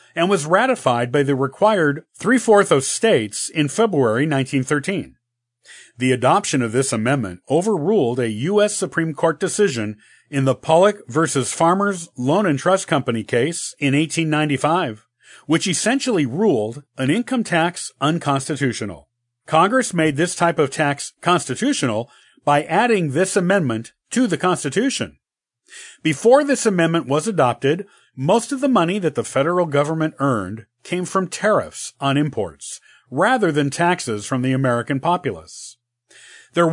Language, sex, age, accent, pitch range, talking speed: English, male, 40-59, American, 130-180 Hz, 135 wpm